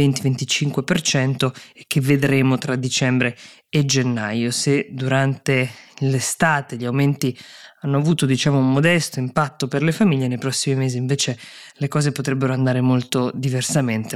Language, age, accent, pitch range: Italian, 20-39, native, 130-145 Hz